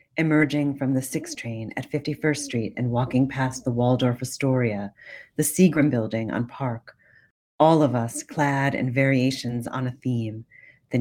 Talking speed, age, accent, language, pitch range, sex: 160 wpm, 40-59, American, English, 120-140 Hz, female